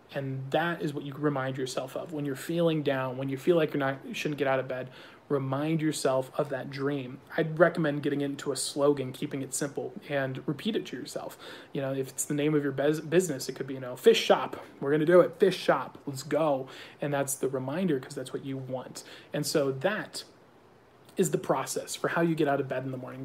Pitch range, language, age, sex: 135-160 Hz, English, 30-49, male